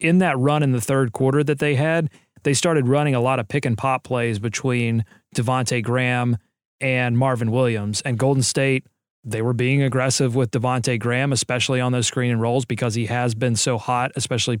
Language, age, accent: English, 30-49, American